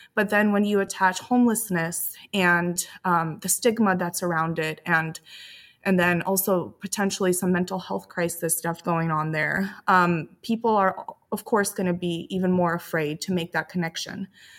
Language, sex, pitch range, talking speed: English, female, 170-195 Hz, 170 wpm